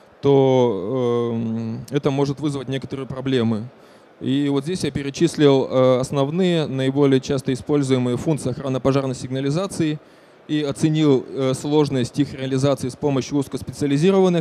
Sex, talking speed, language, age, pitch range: male, 110 wpm, Russian, 20-39, 125-145 Hz